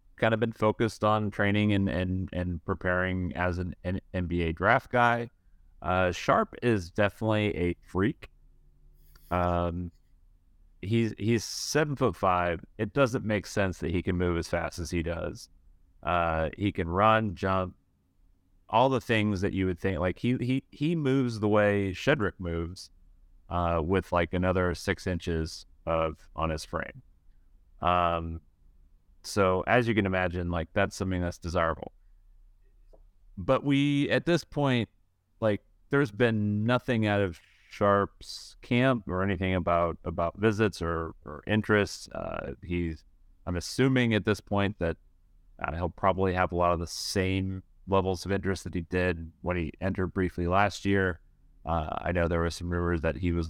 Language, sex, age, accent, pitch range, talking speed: English, male, 30-49, American, 85-100 Hz, 160 wpm